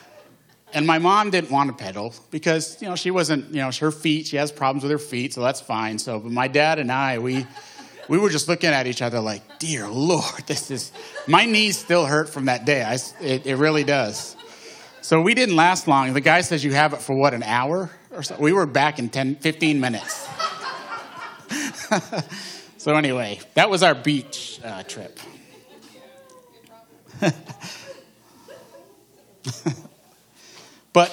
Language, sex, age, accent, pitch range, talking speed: English, male, 30-49, American, 120-155 Hz, 170 wpm